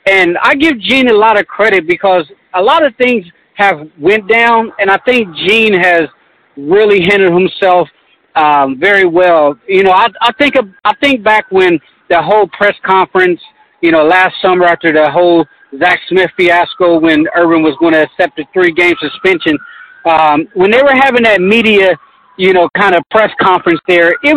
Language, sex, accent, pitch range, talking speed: English, male, American, 175-235 Hz, 185 wpm